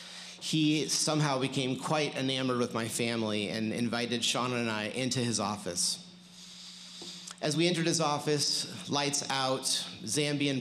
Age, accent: 30-49, American